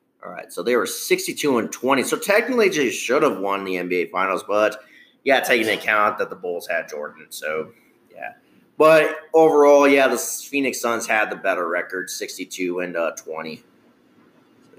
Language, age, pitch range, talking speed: English, 30-49, 105-155 Hz, 180 wpm